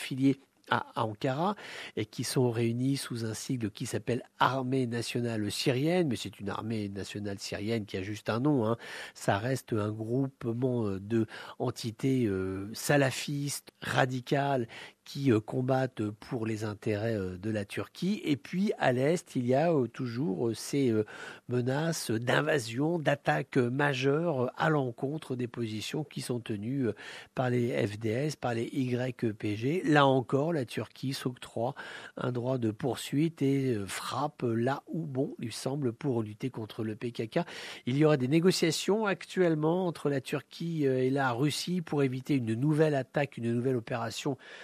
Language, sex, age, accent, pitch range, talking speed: English, male, 50-69, French, 115-145 Hz, 145 wpm